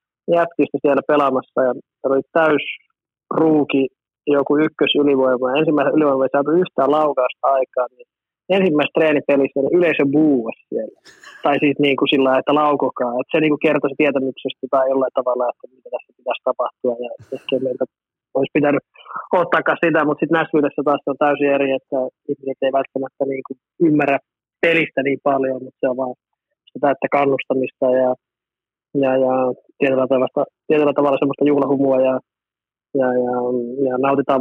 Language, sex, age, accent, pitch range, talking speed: Finnish, male, 20-39, native, 130-145 Hz, 155 wpm